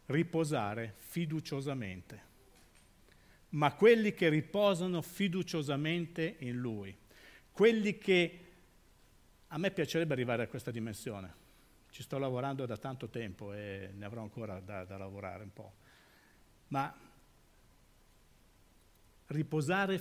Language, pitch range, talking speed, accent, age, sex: Italian, 115-165 Hz, 105 wpm, native, 50-69, male